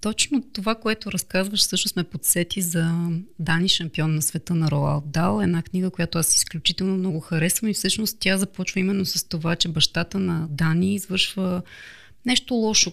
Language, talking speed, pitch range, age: Bulgarian, 165 wpm, 170-205 Hz, 30-49